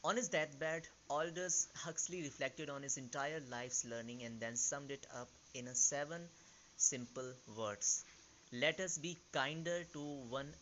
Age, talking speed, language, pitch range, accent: 20-39, 155 wpm, English, 125-160 Hz, Indian